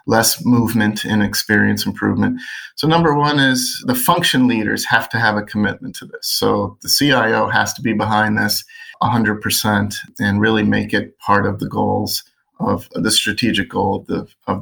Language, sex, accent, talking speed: English, male, American, 170 wpm